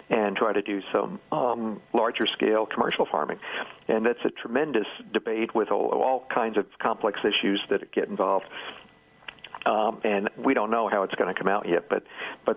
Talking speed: 185 wpm